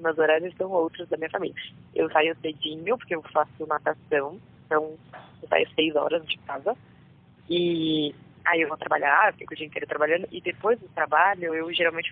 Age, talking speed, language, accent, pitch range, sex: 20-39, 190 wpm, Portuguese, Brazilian, 155-185 Hz, female